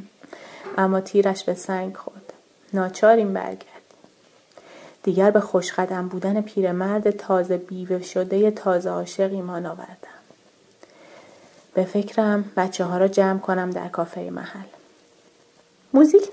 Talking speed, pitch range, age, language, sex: 115 wpm, 180-210 Hz, 30-49, Persian, female